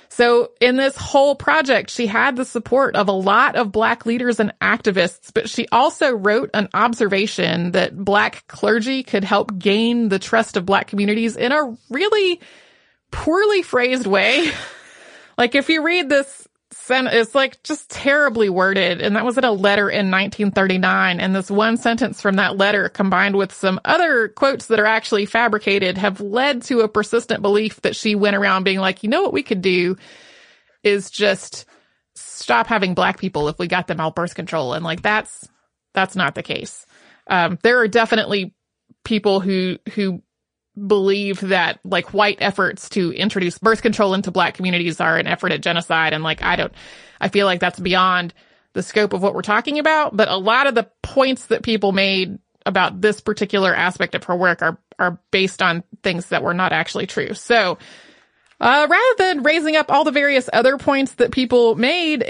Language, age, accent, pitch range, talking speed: English, 30-49, American, 190-240 Hz, 185 wpm